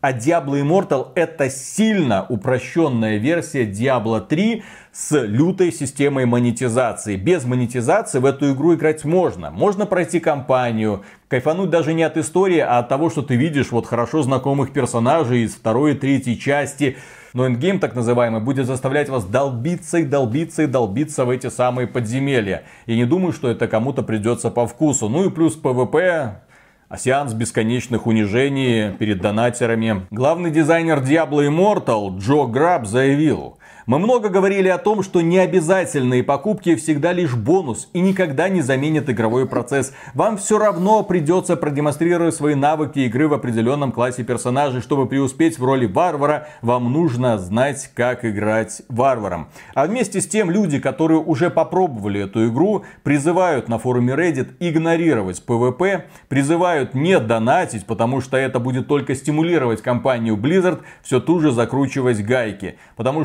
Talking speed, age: 150 wpm, 30-49